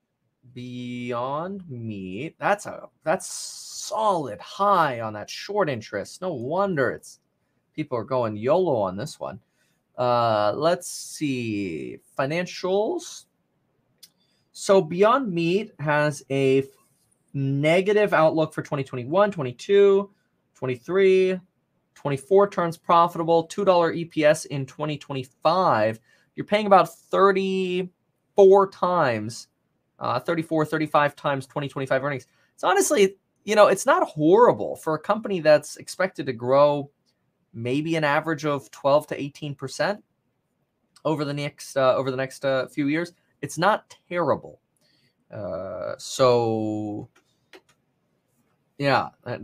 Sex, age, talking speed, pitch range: male, 20-39, 115 wpm, 130-185 Hz